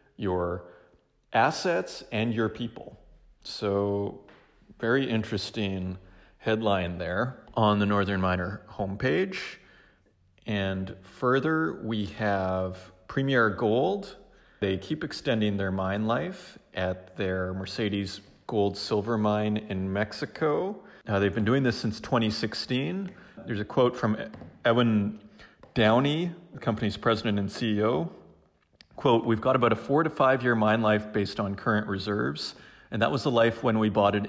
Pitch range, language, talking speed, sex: 95-115 Hz, English, 135 wpm, male